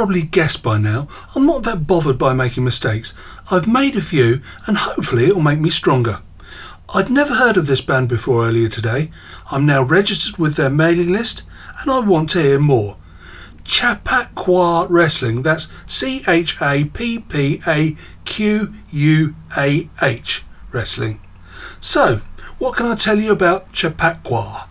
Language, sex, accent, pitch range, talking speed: English, male, British, 125-210 Hz, 140 wpm